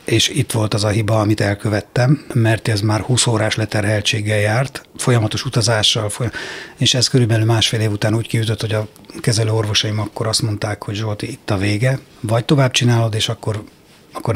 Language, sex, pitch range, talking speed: Hungarian, male, 110-130 Hz, 180 wpm